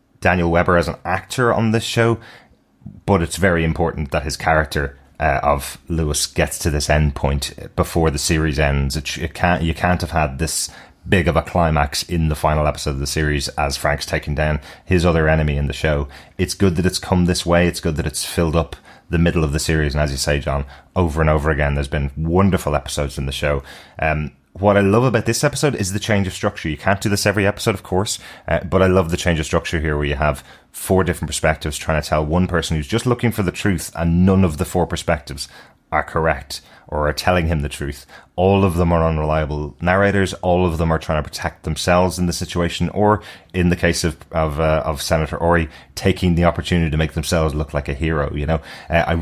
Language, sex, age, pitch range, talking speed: English, male, 30-49, 75-90 Hz, 235 wpm